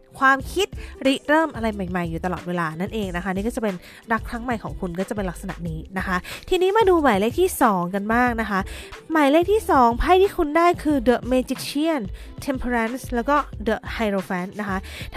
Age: 20-39